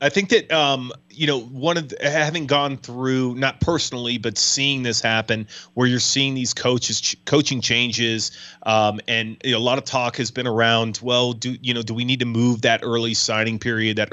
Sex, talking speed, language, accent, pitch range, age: male, 215 wpm, English, American, 110-130 Hz, 30-49